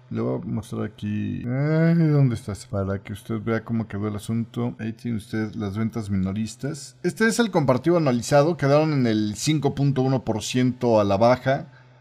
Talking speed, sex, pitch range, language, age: 165 wpm, male, 110-150 Hz, Spanish, 40-59